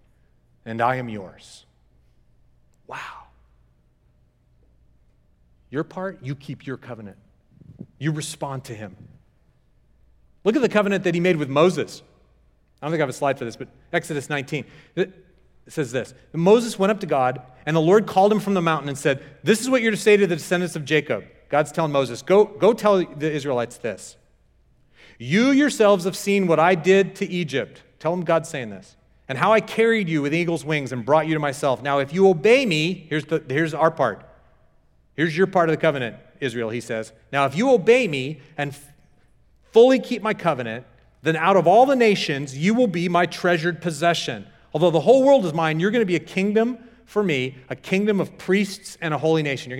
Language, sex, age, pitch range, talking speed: English, male, 40-59, 135-195 Hz, 200 wpm